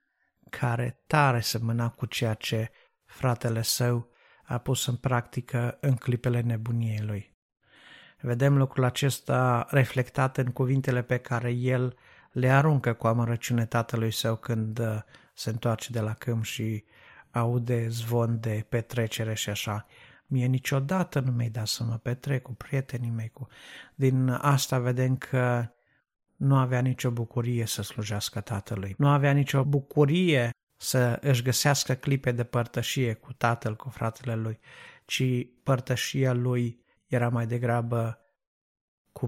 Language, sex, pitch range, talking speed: Romanian, male, 115-130 Hz, 135 wpm